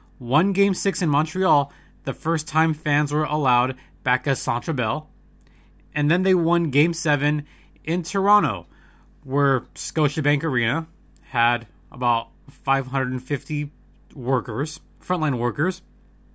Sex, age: male, 20-39